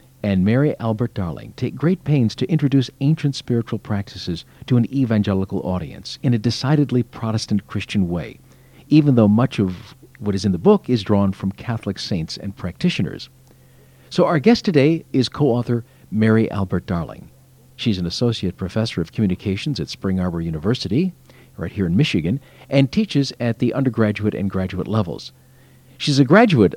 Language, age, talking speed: English, 50-69, 160 wpm